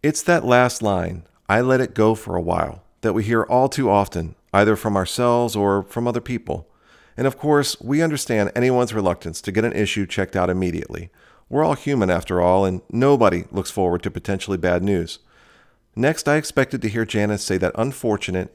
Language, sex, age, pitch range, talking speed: English, male, 40-59, 95-125 Hz, 195 wpm